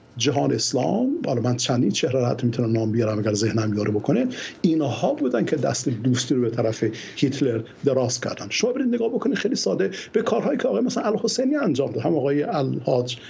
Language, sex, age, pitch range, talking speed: Persian, male, 50-69, 125-200 Hz, 190 wpm